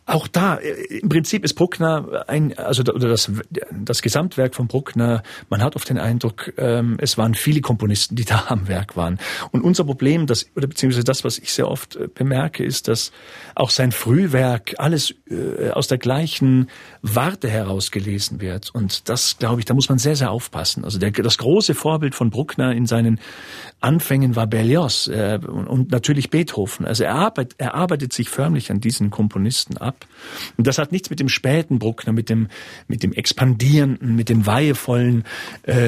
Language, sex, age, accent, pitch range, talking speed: German, male, 40-59, German, 115-145 Hz, 170 wpm